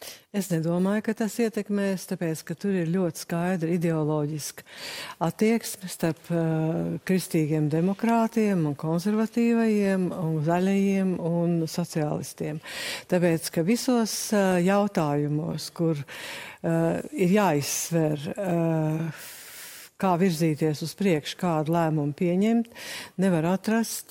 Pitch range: 160-195 Hz